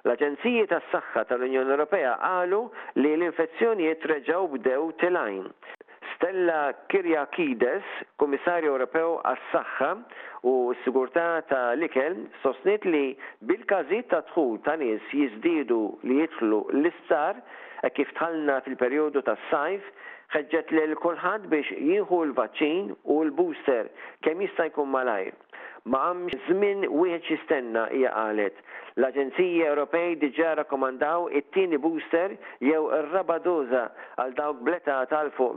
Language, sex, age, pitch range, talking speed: English, male, 50-69, 140-230 Hz, 110 wpm